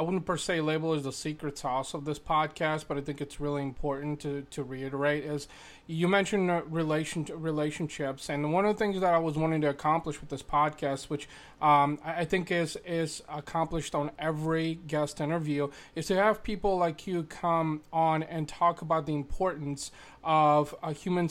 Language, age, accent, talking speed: English, 30-49, American, 190 wpm